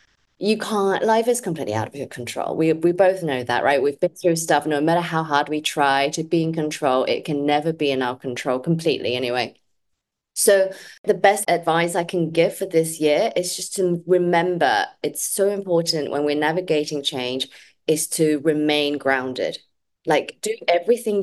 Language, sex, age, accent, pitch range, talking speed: English, female, 20-39, British, 150-210 Hz, 185 wpm